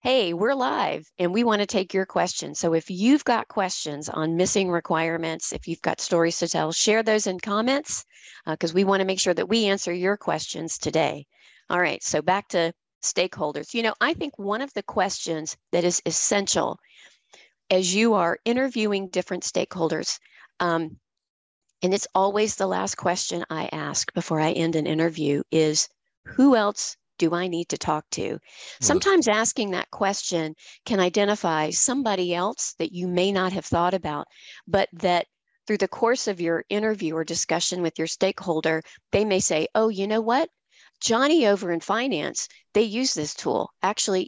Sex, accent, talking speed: female, American, 180 wpm